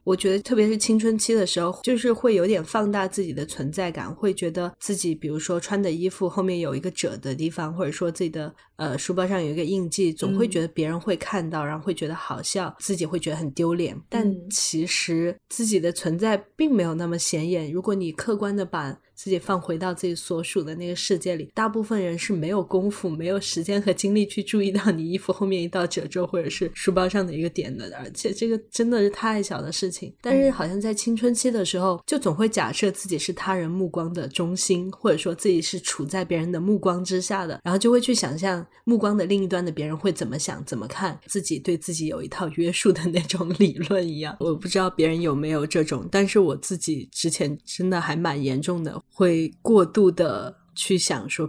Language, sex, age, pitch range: Chinese, female, 10-29, 165-195 Hz